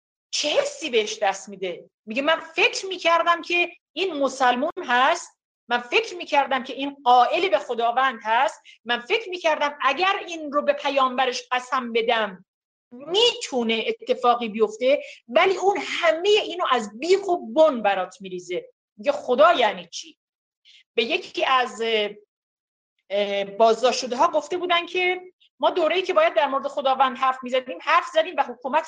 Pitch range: 250-365 Hz